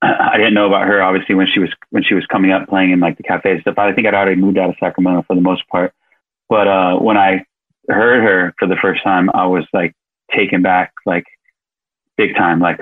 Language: English